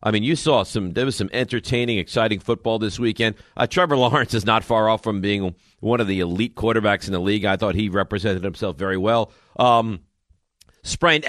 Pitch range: 100-130 Hz